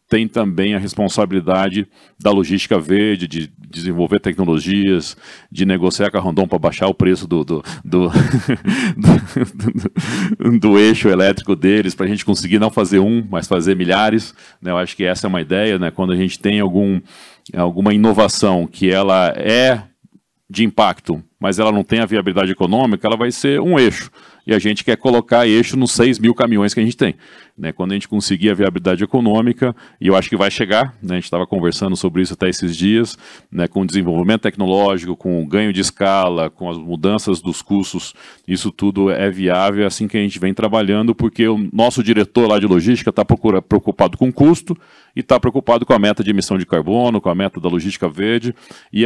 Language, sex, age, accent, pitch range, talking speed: Portuguese, male, 40-59, Brazilian, 95-110 Hz, 190 wpm